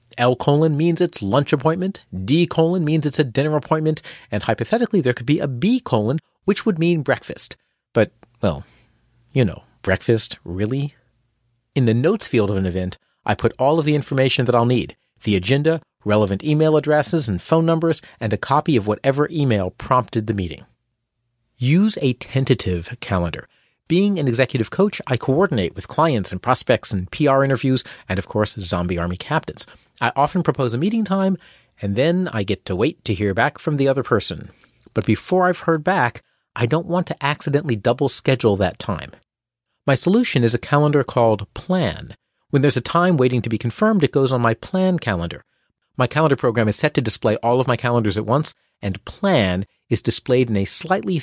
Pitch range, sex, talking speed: 110-155 Hz, male, 190 wpm